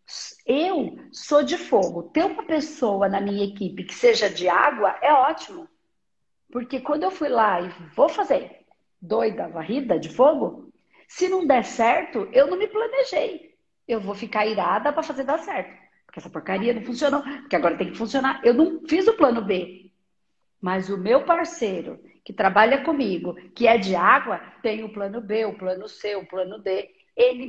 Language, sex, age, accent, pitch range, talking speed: Portuguese, female, 50-69, Brazilian, 200-290 Hz, 180 wpm